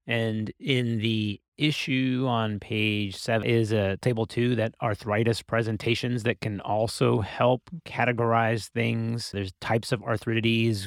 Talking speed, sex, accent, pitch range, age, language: 135 wpm, male, American, 95-115 Hz, 30-49, English